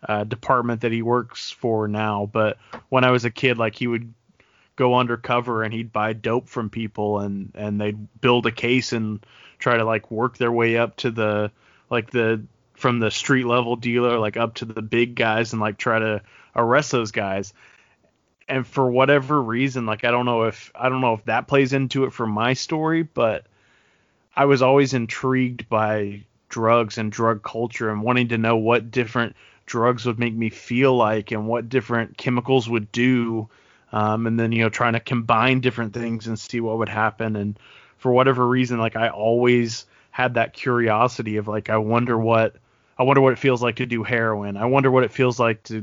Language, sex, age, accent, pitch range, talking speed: English, male, 20-39, American, 110-125 Hz, 200 wpm